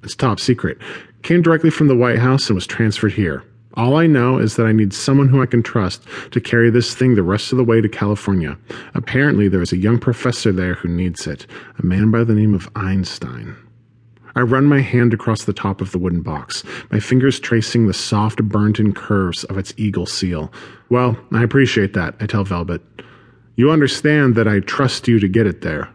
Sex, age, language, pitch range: male, 40-59, English, 95-125 Hz